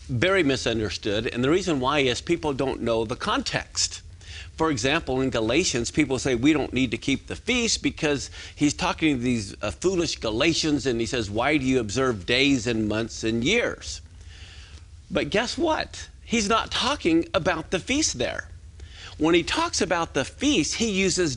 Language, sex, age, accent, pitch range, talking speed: English, male, 50-69, American, 120-180 Hz, 175 wpm